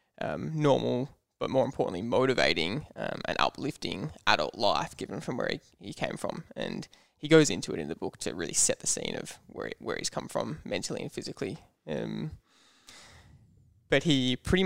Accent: Australian